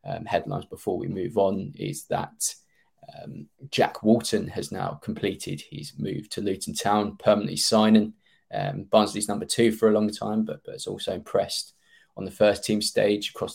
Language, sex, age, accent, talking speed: English, male, 20-39, British, 175 wpm